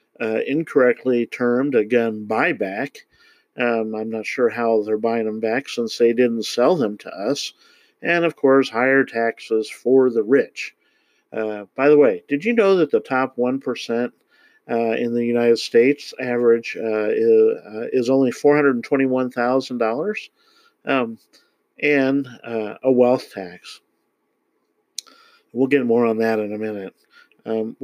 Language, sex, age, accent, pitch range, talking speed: English, male, 50-69, American, 120-145 Hz, 145 wpm